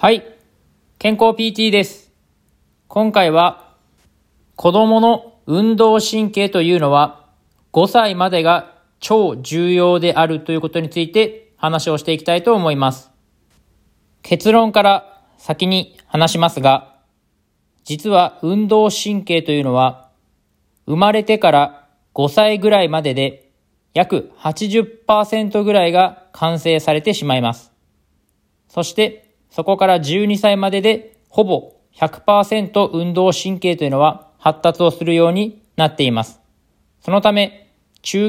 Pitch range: 145-200 Hz